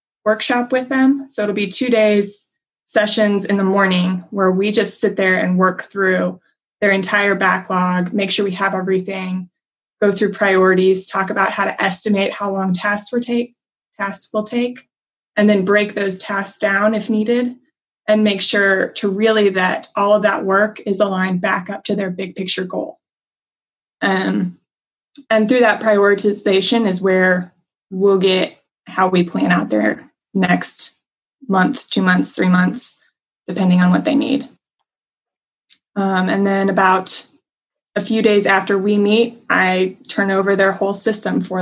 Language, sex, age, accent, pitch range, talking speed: English, female, 20-39, American, 185-210 Hz, 165 wpm